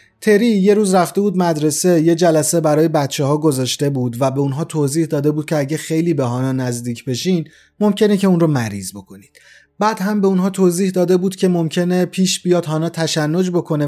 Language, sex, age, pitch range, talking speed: Persian, male, 30-49, 140-180 Hz, 195 wpm